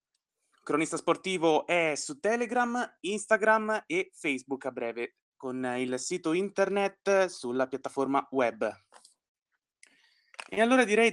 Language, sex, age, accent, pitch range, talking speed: Italian, male, 20-39, native, 140-190 Hz, 110 wpm